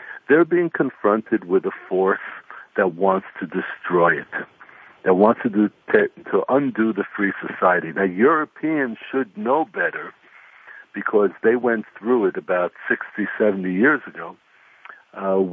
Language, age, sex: English, 60-79, male